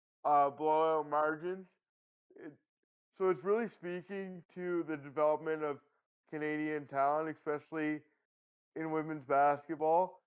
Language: English